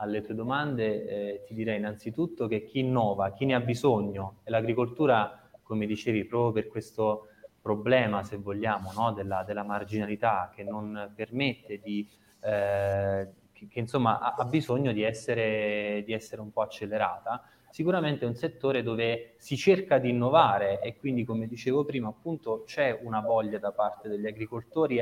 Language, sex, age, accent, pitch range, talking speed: Italian, male, 20-39, native, 105-125 Hz, 165 wpm